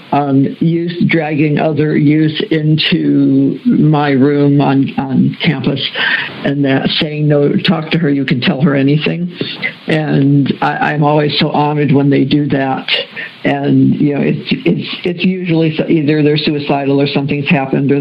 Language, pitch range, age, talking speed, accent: English, 140-160 Hz, 60-79, 155 wpm, American